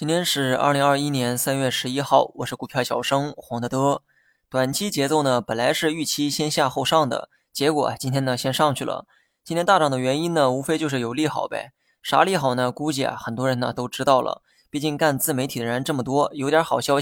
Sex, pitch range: male, 130-155 Hz